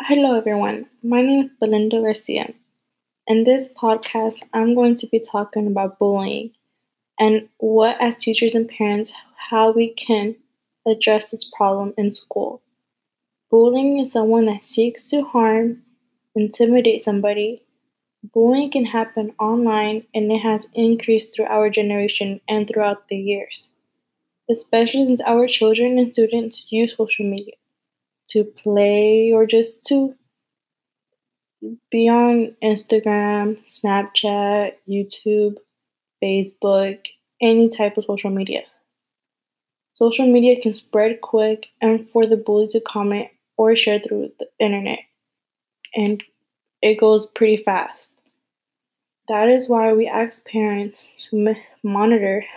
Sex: female